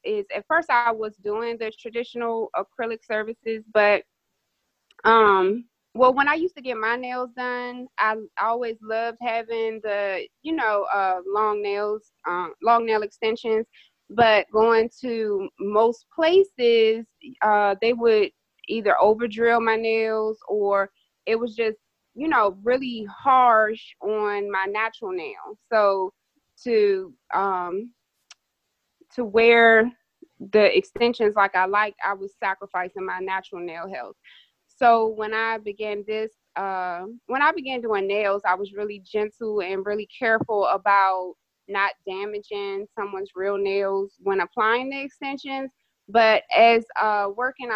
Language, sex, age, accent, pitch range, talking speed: English, female, 20-39, American, 205-235 Hz, 135 wpm